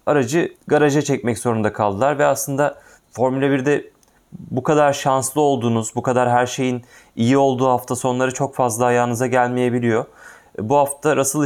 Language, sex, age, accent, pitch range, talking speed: Turkish, male, 30-49, native, 120-145 Hz, 145 wpm